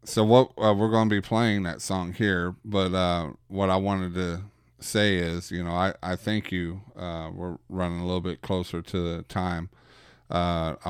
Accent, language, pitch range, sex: American, Japanese, 85-100 Hz, male